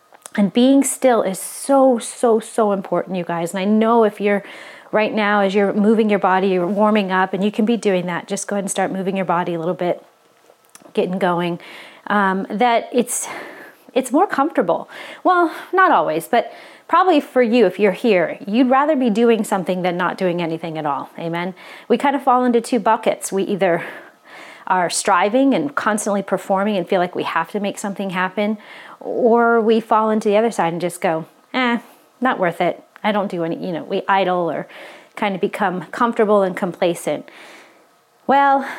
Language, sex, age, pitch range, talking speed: English, female, 30-49, 185-245 Hz, 195 wpm